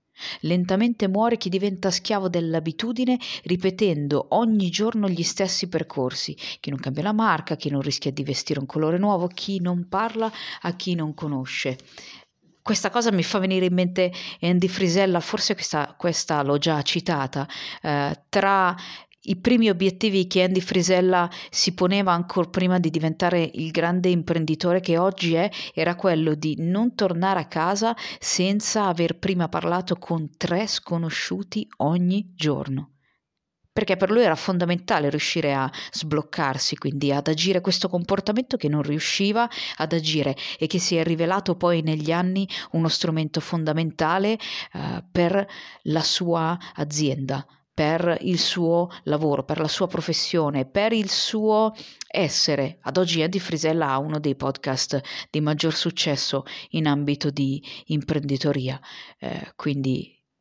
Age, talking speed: 40-59, 145 wpm